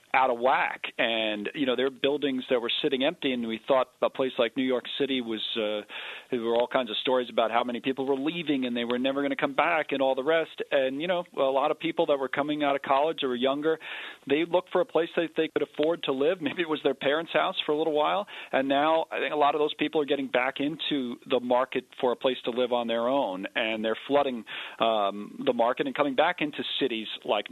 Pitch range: 110-150 Hz